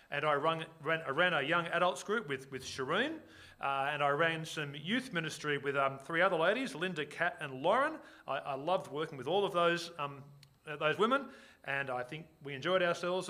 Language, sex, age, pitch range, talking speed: English, male, 40-59, 140-180 Hz, 205 wpm